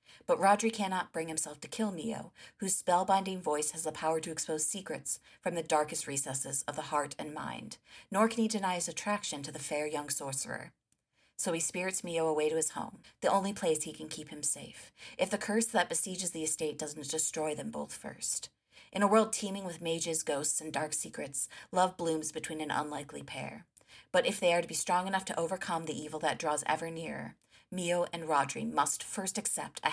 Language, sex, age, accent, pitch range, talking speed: English, female, 30-49, American, 155-190 Hz, 210 wpm